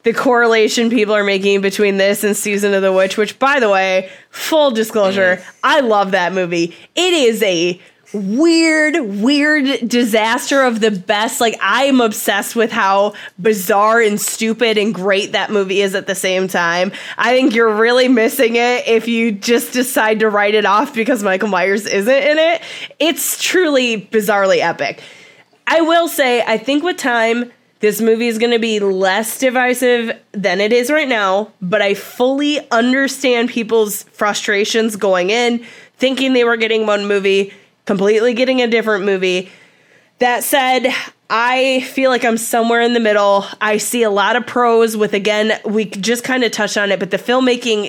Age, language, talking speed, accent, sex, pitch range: 20-39, English, 175 wpm, American, female, 200-245 Hz